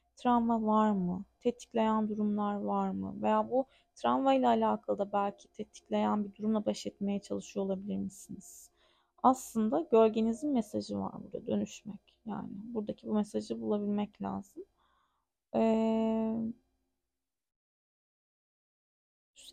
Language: Turkish